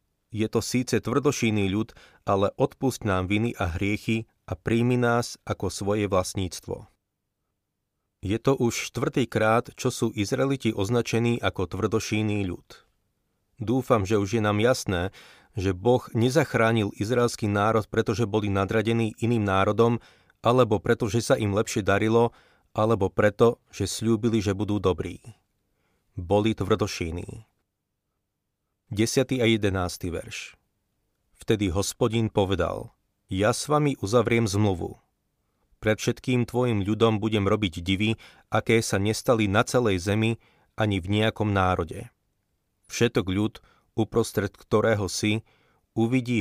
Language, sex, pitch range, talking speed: Slovak, male, 100-115 Hz, 125 wpm